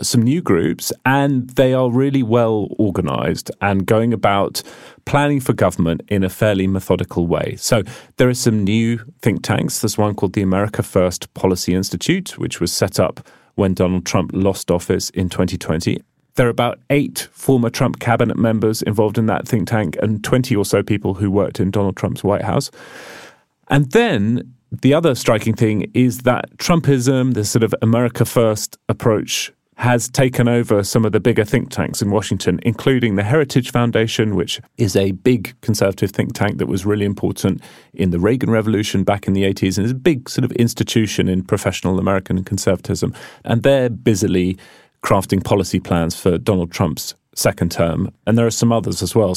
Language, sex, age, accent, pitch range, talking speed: English, male, 30-49, British, 95-120 Hz, 180 wpm